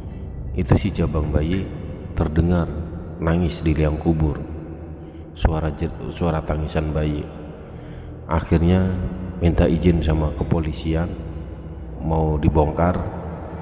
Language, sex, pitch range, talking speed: Indonesian, male, 75-85 Hz, 95 wpm